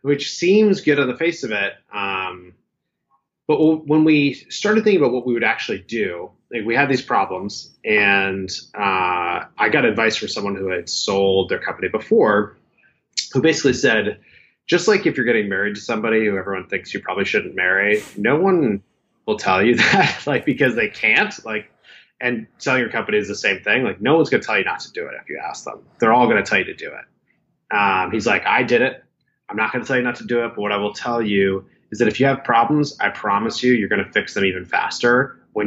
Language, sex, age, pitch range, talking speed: English, male, 30-49, 100-135 Hz, 230 wpm